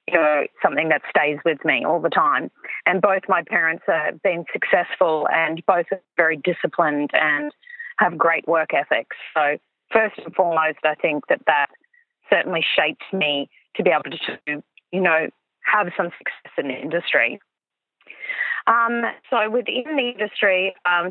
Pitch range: 160-215 Hz